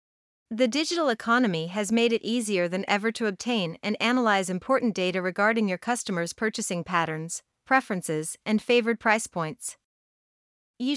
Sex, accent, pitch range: female, American, 190-240 Hz